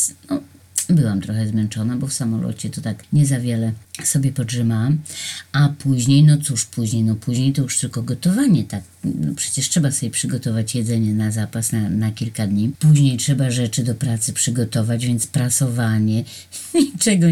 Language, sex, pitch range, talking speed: Polish, female, 115-145 Hz, 165 wpm